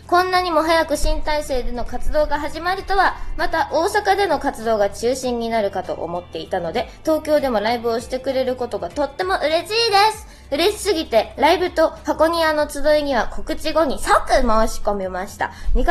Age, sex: 20-39, female